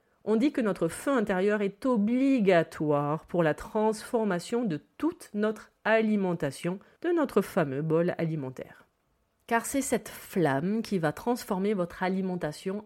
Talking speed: 135 wpm